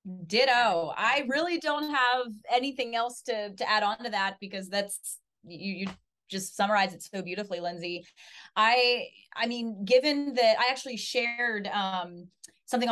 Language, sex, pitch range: English, female, 175-235 Hz